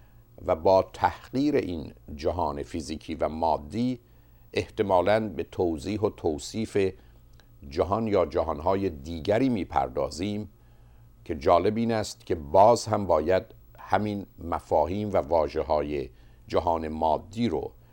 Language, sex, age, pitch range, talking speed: Persian, male, 50-69, 85-115 Hz, 115 wpm